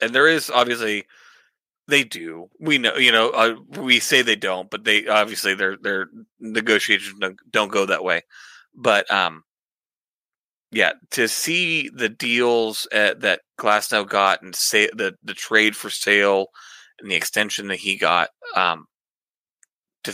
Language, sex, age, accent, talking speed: English, male, 30-49, American, 150 wpm